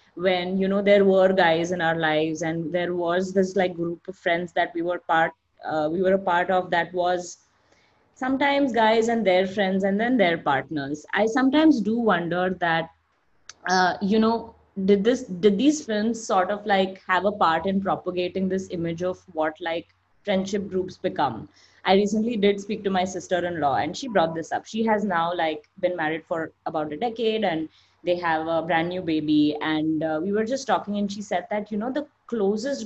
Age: 20-39